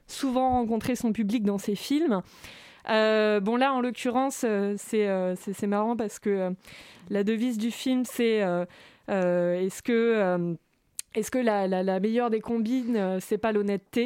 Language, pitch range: French, 195-235 Hz